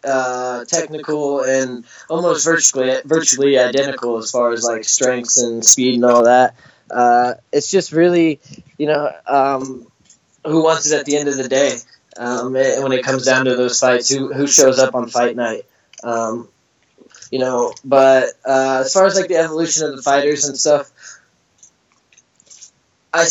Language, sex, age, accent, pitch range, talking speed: English, male, 20-39, American, 120-140 Hz, 170 wpm